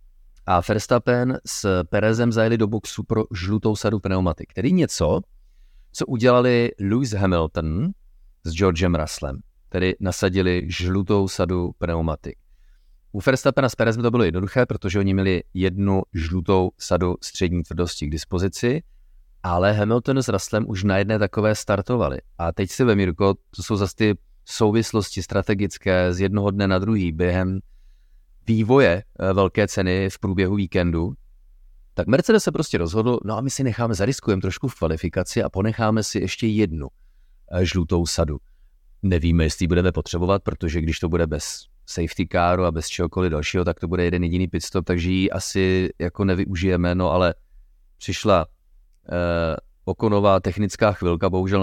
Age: 30-49